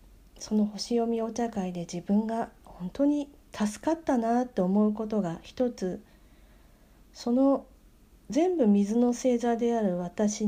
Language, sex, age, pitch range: Japanese, female, 40-59, 195-255 Hz